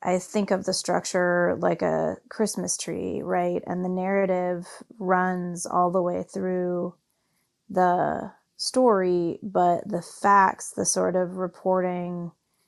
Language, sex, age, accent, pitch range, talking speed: English, female, 30-49, American, 175-210 Hz, 130 wpm